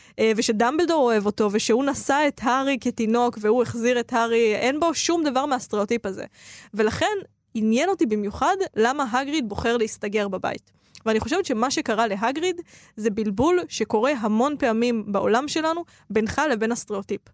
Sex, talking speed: female, 145 wpm